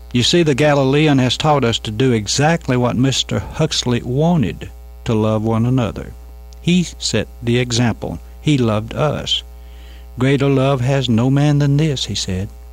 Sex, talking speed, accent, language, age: male, 160 wpm, American, English, 60-79